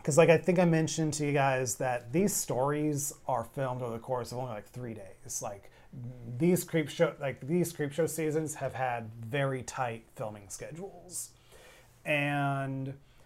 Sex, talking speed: male, 170 wpm